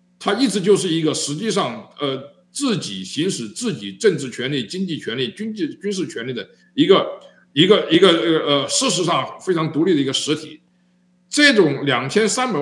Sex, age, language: male, 50-69, Chinese